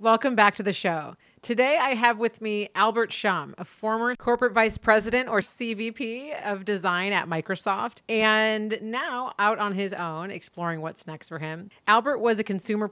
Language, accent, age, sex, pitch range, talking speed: English, American, 30-49, female, 175-225 Hz, 175 wpm